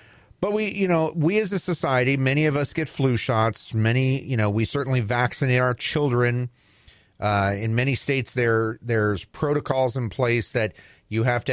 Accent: American